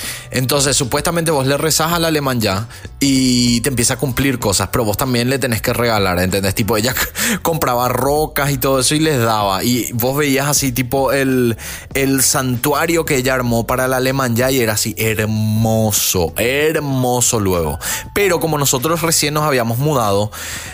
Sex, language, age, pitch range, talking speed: male, Spanish, 20-39, 115-150 Hz, 170 wpm